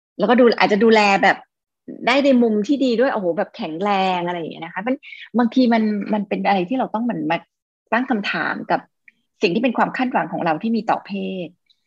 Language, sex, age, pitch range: Thai, female, 20-39, 185-235 Hz